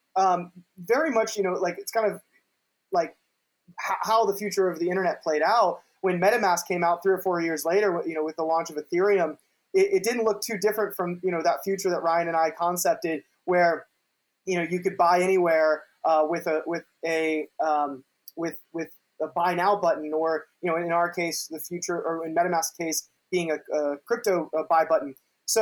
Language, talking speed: English, 210 wpm